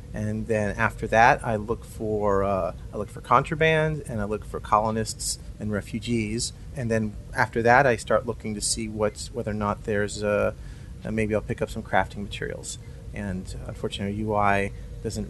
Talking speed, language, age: 180 wpm, English, 30-49